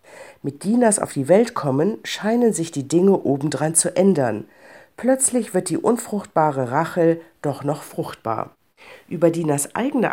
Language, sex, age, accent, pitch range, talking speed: German, female, 50-69, German, 145-210 Hz, 140 wpm